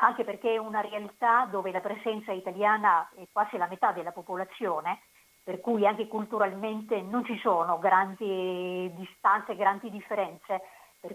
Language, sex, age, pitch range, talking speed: Italian, female, 50-69, 200-235 Hz, 145 wpm